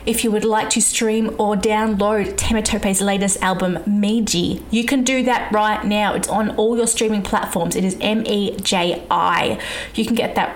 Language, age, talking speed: English, 20-39, 175 wpm